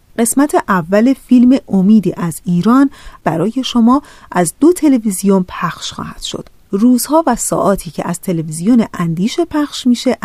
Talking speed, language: 135 wpm, Persian